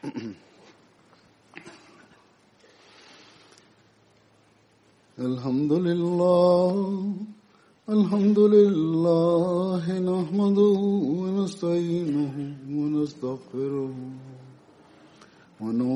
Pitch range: 160-195 Hz